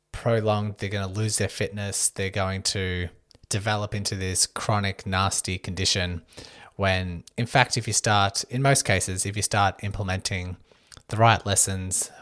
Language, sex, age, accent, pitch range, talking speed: English, male, 20-39, Australian, 90-105 Hz, 155 wpm